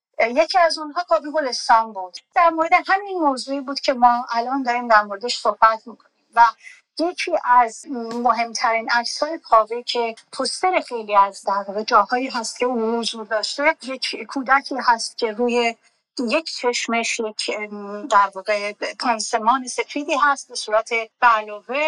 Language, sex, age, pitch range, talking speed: Persian, female, 50-69, 230-315 Hz, 145 wpm